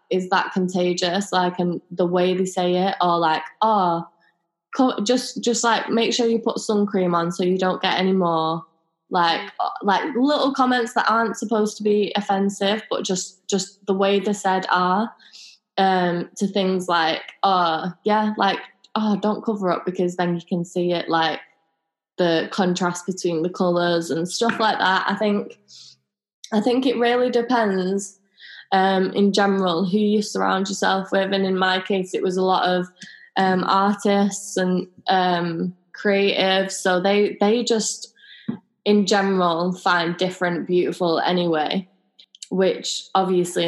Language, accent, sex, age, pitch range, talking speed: English, British, female, 10-29, 175-210 Hz, 160 wpm